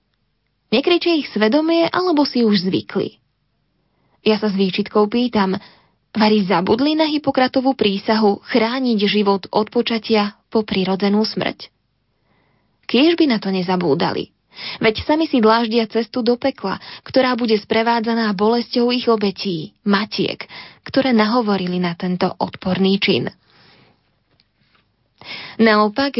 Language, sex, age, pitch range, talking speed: Slovak, female, 20-39, 200-255 Hz, 115 wpm